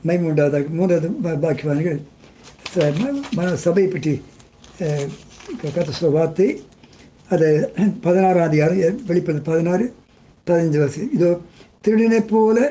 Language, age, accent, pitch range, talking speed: Tamil, 60-79, native, 150-195 Hz, 75 wpm